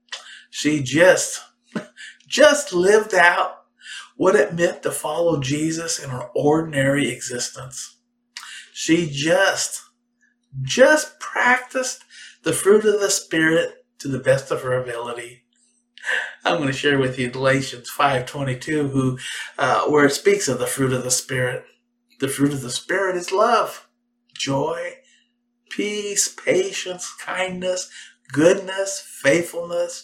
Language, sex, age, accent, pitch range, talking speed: English, male, 50-69, American, 145-240 Hz, 125 wpm